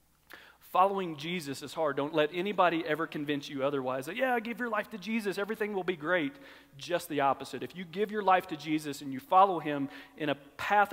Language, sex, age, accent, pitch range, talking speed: English, male, 40-59, American, 135-165 Hz, 215 wpm